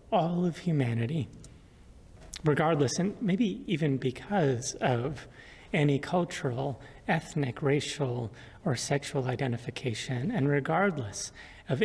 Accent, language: American, English